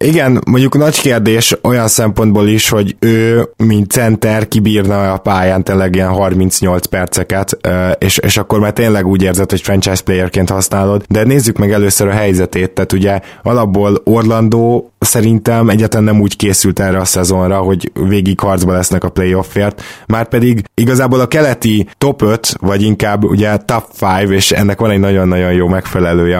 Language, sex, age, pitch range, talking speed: Hungarian, male, 20-39, 95-110 Hz, 160 wpm